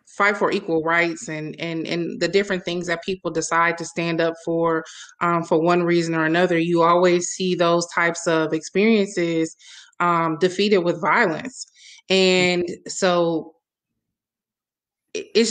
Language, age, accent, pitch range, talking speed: English, 20-39, American, 170-200 Hz, 145 wpm